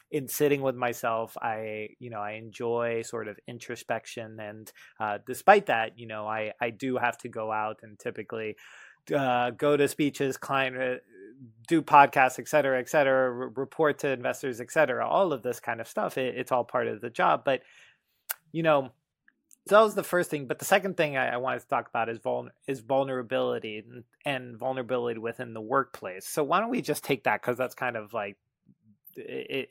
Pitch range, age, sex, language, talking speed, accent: 110-135 Hz, 30-49, male, English, 185 wpm, American